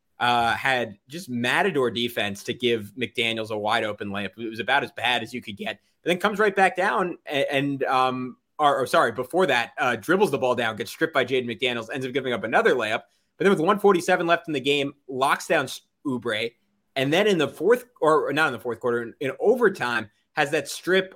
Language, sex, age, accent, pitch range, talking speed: English, male, 20-39, American, 125-160 Hz, 225 wpm